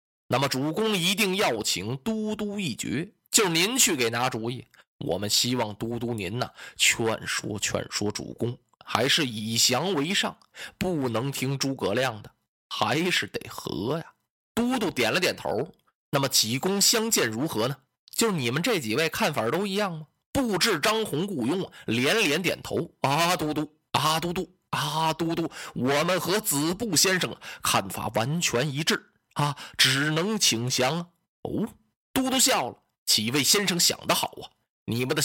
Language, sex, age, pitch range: Chinese, male, 20-39, 125-185 Hz